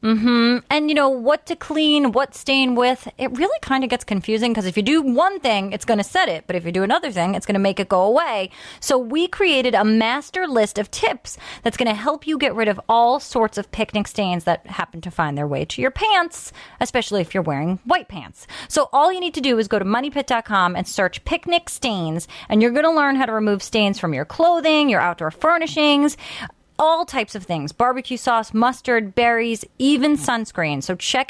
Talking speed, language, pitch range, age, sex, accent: 225 wpm, English, 205-275 Hz, 30-49, female, American